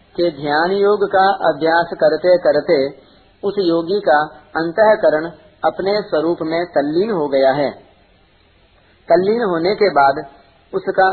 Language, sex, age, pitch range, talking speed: Hindi, male, 40-59, 145-190 Hz, 120 wpm